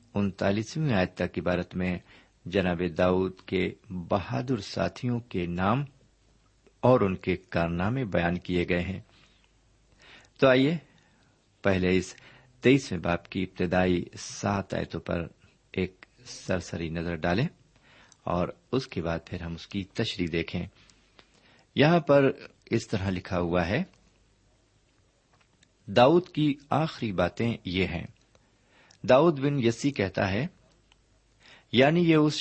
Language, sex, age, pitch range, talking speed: Urdu, male, 50-69, 90-125 Hz, 120 wpm